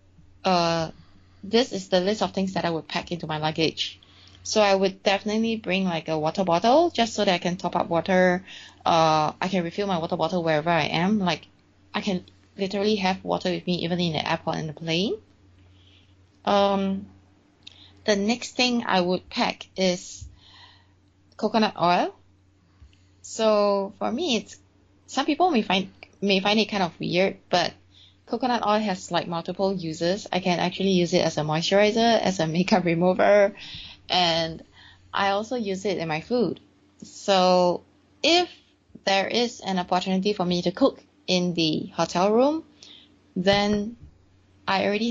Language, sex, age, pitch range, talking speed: English, female, 20-39, 145-200 Hz, 165 wpm